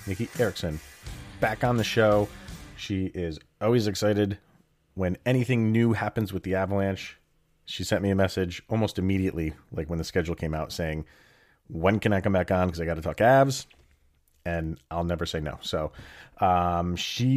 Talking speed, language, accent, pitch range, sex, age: 175 wpm, English, American, 85-110 Hz, male, 30-49